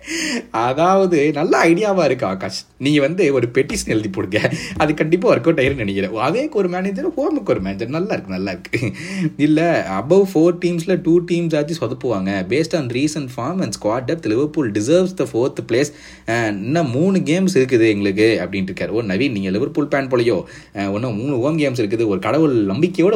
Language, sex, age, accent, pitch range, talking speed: Tamil, male, 30-49, native, 110-170 Hz, 35 wpm